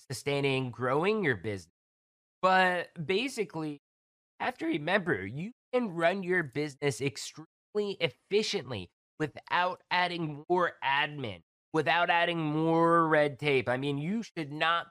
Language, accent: English, American